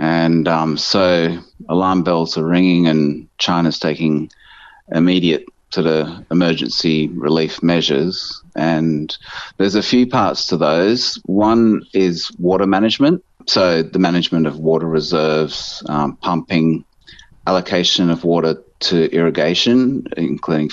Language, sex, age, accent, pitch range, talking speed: English, male, 30-49, Australian, 80-100 Hz, 120 wpm